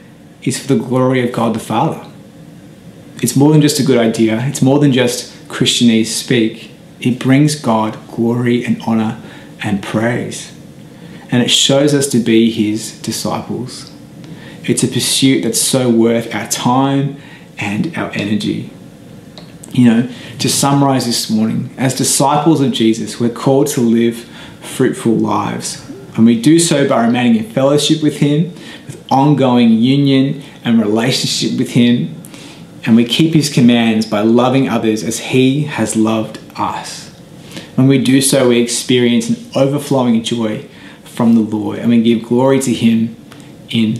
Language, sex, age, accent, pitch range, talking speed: English, male, 30-49, Australian, 115-145 Hz, 155 wpm